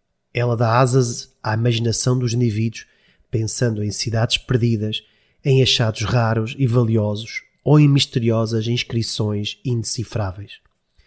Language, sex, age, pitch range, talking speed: Portuguese, male, 30-49, 110-145 Hz, 115 wpm